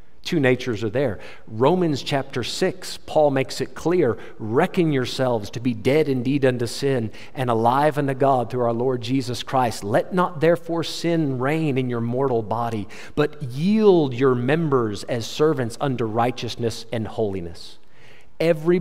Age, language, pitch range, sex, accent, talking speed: 50-69, English, 115-150 Hz, male, American, 155 wpm